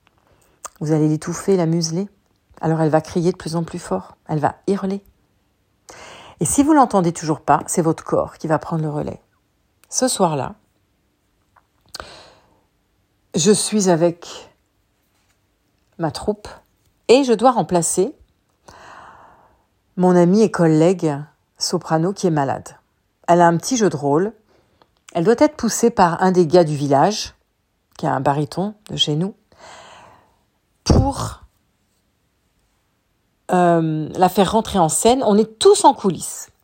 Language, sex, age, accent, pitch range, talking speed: French, female, 50-69, French, 155-200 Hz, 140 wpm